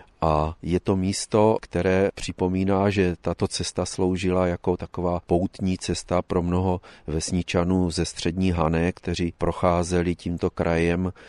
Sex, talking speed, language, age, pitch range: male, 130 wpm, Czech, 40-59, 80-90 Hz